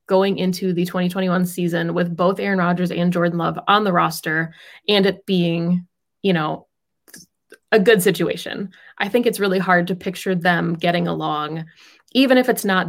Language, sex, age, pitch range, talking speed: English, female, 20-39, 175-205 Hz, 170 wpm